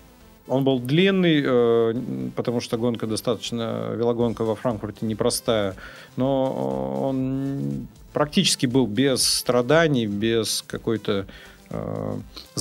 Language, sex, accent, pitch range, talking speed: Russian, male, native, 110-130 Hz, 100 wpm